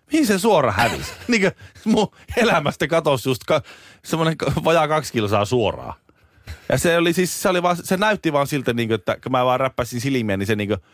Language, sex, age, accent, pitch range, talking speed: Finnish, male, 30-49, native, 90-130 Hz, 210 wpm